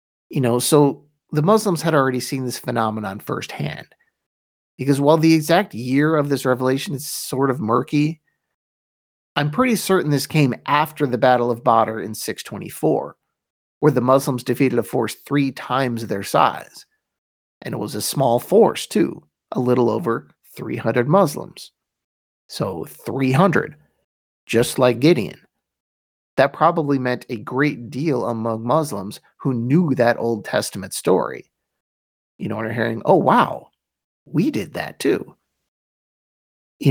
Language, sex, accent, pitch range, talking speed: English, male, American, 115-150 Hz, 145 wpm